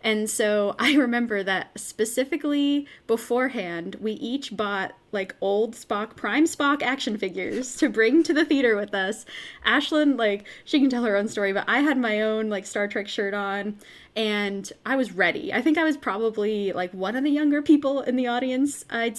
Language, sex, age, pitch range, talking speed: English, female, 20-39, 205-255 Hz, 190 wpm